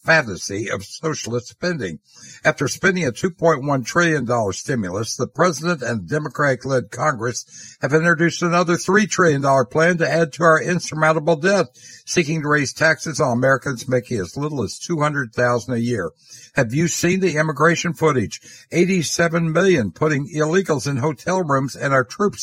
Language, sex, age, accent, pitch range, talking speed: English, male, 60-79, American, 130-170 Hz, 150 wpm